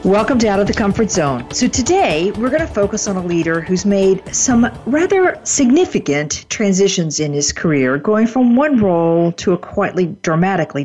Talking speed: 185 wpm